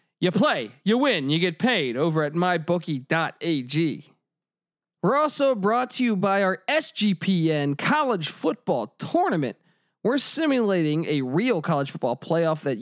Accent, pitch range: American, 150-200 Hz